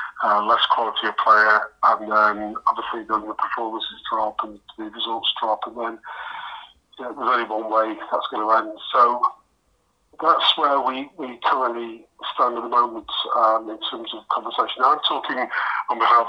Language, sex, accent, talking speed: English, male, British, 175 wpm